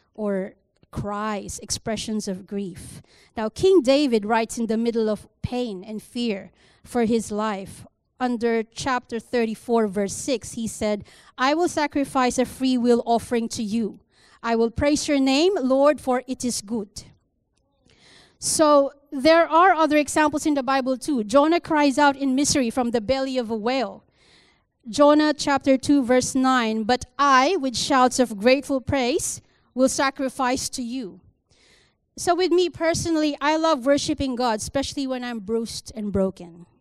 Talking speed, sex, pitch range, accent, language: 155 wpm, female, 230-290 Hz, Filipino, English